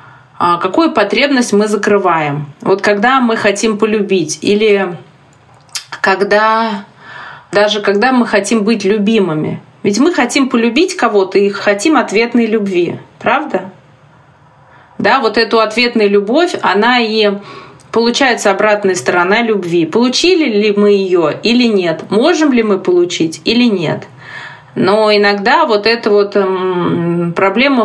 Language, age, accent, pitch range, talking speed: Russian, 30-49, native, 195-240 Hz, 120 wpm